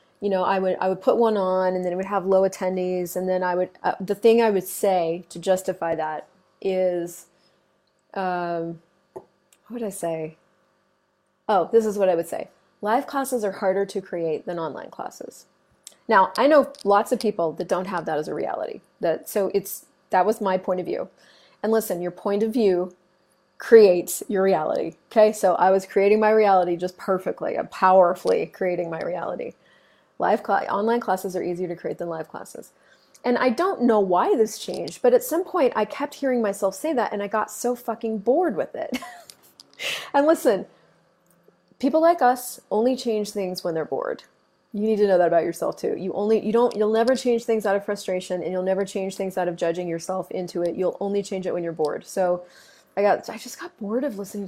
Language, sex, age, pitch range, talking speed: English, female, 30-49, 180-225 Hz, 205 wpm